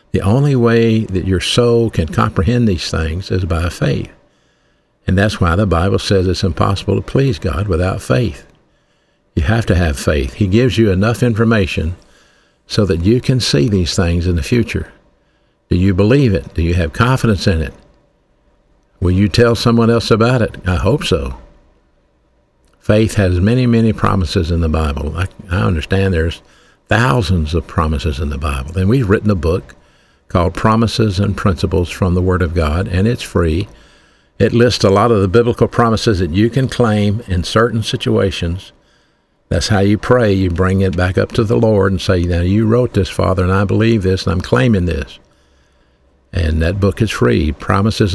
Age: 60-79